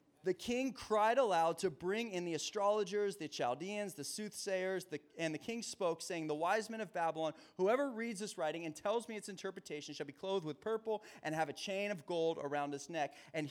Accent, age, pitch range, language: American, 30-49, 155-210 Hz, English